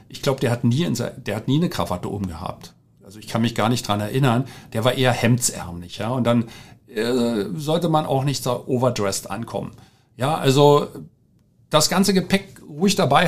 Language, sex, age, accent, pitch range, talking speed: German, male, 50-69, German, 125-165 Hz, 185 wpm